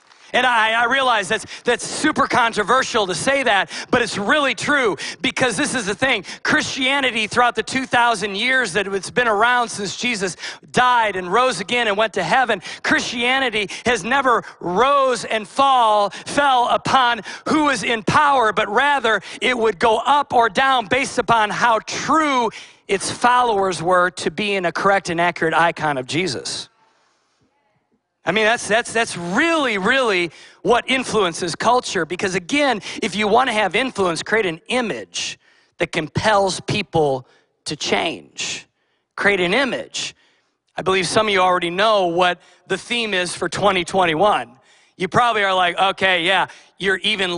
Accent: American